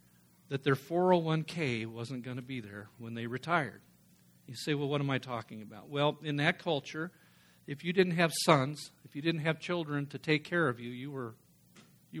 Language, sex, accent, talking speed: English, male, American, 195 wpm